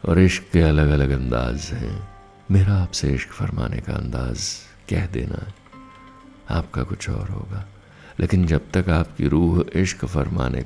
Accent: native